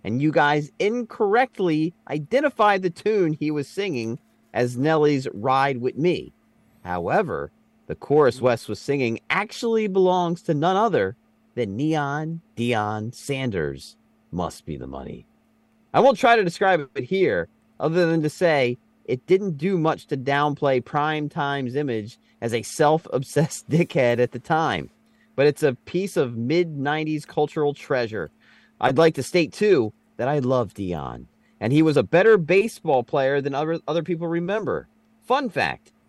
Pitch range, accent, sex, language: 125-170 Hz, American, male, English